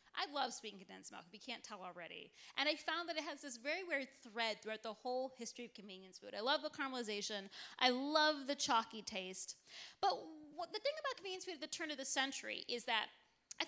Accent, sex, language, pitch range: American, female, English, 225-300 Hz